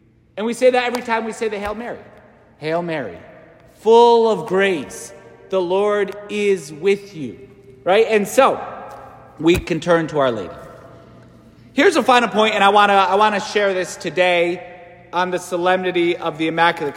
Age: 30-49